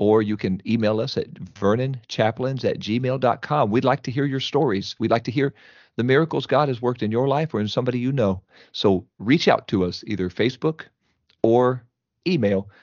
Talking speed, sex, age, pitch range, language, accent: 190 wpm, male, 40-59, 105-140 Hz, English, American